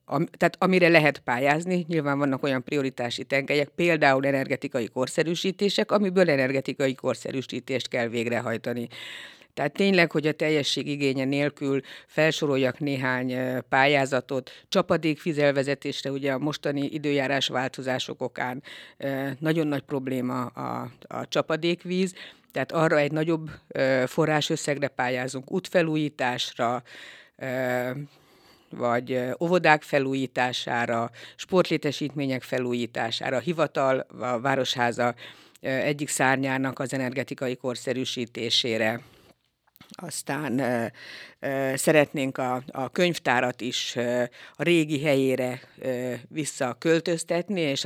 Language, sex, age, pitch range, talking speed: Hungarian, female, 60-79, 130-155 Hz, 95 wpm